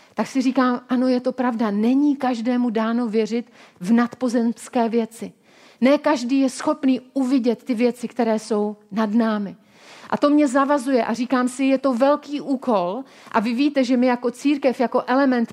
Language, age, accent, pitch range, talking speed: Czech, 40-59, native, 230-270 Hz, 170 wpm